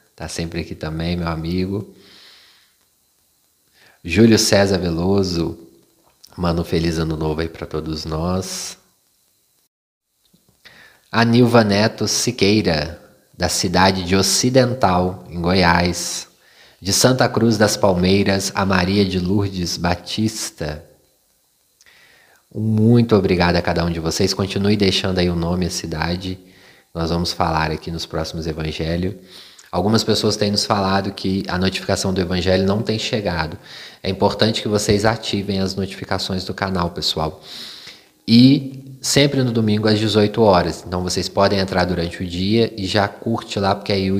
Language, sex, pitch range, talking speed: Portuguese, male, 90-105 Hz, 140 wpm